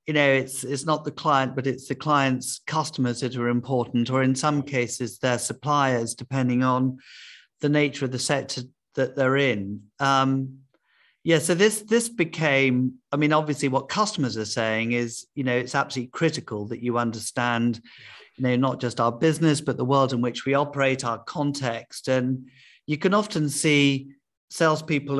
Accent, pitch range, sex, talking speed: British, 125-145 Hz, male, 175 wpm